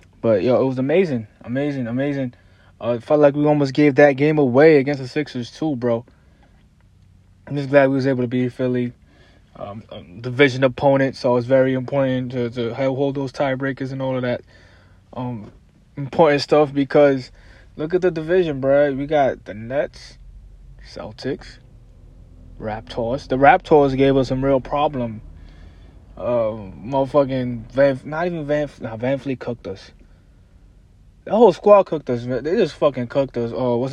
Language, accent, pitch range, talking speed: English, American, 120-140 Hz, 170 wpm